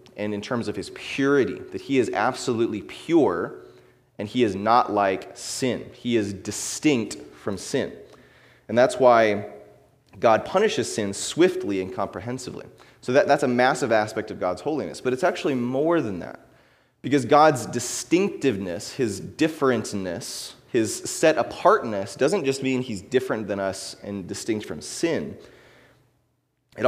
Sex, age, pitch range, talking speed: male, 30-49, 100-135 Hz, 145 wpm